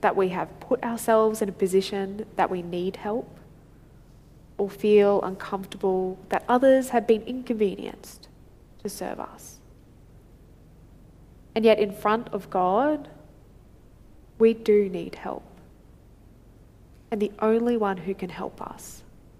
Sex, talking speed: female, 125 wpm